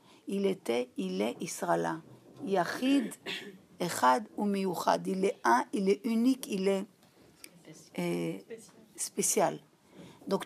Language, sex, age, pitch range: French, female, 50-69, 185-260 Hz